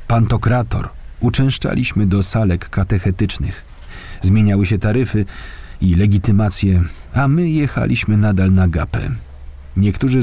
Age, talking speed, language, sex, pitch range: 40-59, 100 wpm, Polish, male, 90-115 Hz